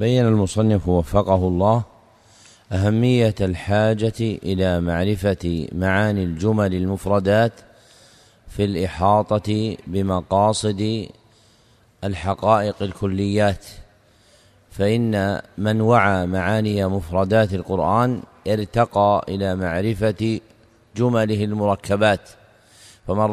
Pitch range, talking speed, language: 100-115 Hz, 70 wpm, Arabic